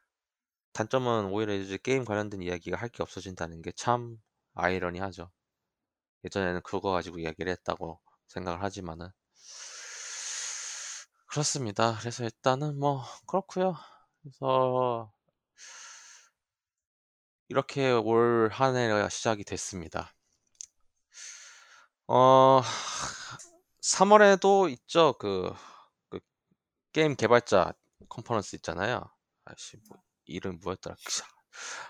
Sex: male